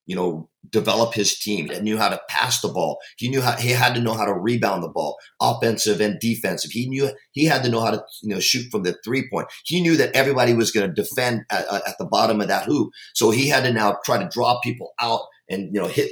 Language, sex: English, male